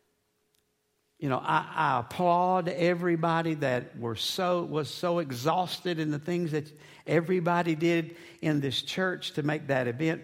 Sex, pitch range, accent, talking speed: male, 135-185 Hz, American, 145 wpm